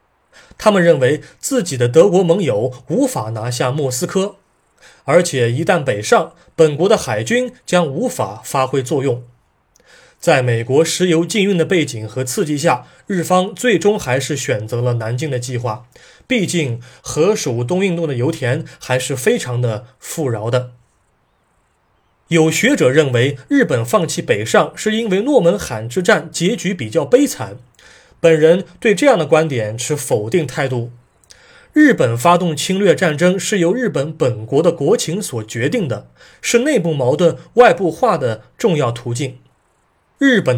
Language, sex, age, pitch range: Chinese, male, 20-39, 125-185 Hz